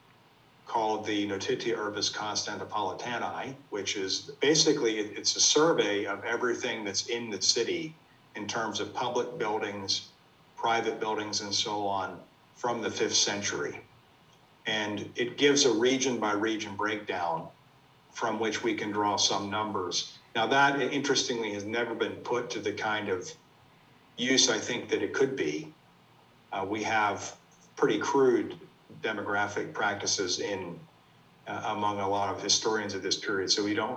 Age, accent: 50-69, American